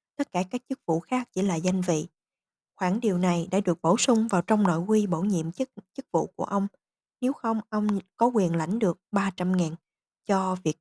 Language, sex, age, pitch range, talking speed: Vietnamese, female, 20-39, 170-215 Hz, 210 wpm